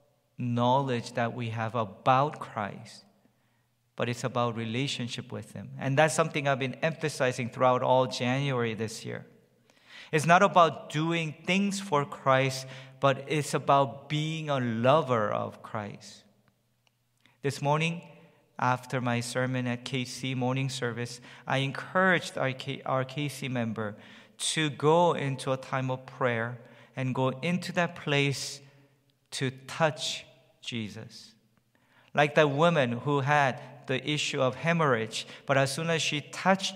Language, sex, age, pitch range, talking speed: English, male, 50-69, 120-145 Hz, 135 wpm